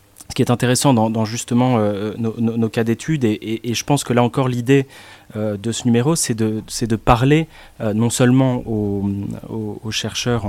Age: 30-49